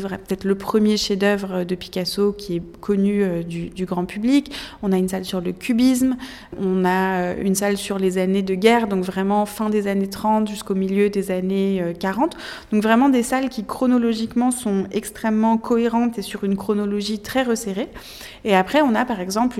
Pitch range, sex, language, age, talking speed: 195-230 Hz, female, French, 20-39, 185 wpm